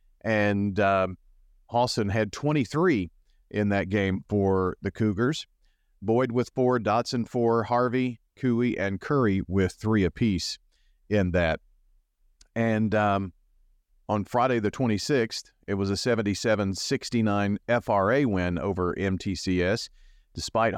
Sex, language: male, English